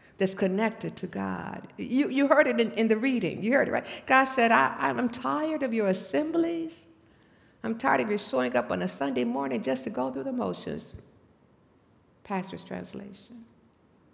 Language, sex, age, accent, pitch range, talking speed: English, female, 60-79, American, 215-270 Hz, 180 wpm